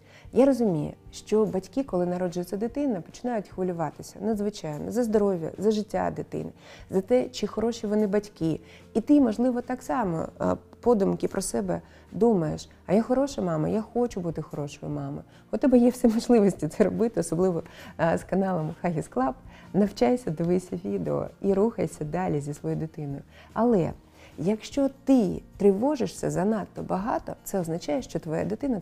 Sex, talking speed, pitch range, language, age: female, 150 wpm, 160-240 Hz, Ukrainian, 30-49